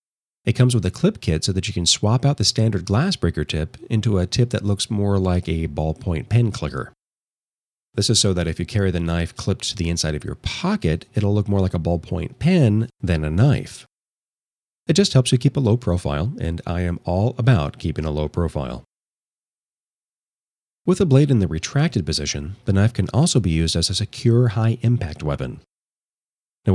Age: 40-59